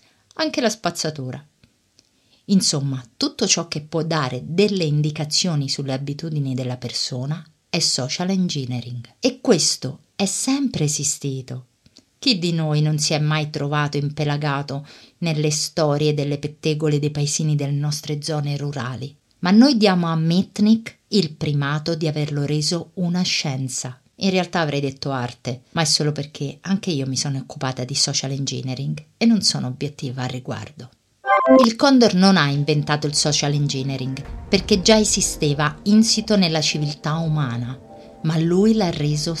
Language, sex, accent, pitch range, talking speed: Italian, female, native, 140-185 Hz, 145 wpm